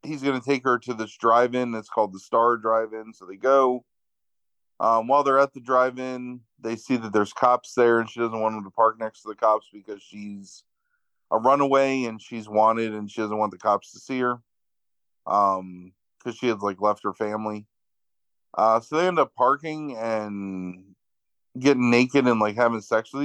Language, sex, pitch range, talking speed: English, male, 105-125 Hz, 205 wpm